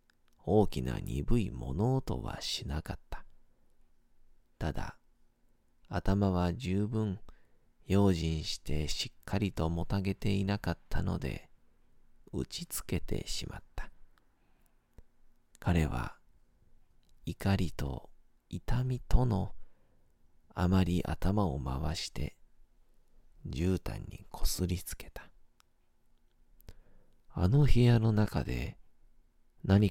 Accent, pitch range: native, 85-100 Hz